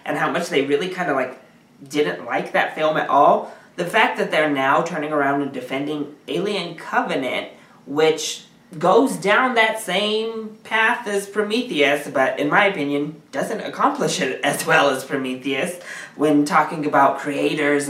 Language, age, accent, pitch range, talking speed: English, 20-39, American, 145-205 Hz, 160 wpm